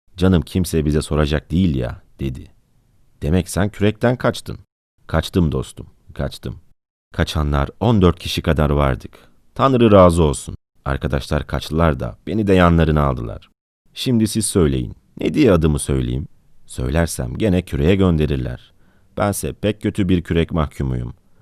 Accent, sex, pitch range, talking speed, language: native, male, 75-100 Hz, 130 wpm, Turkish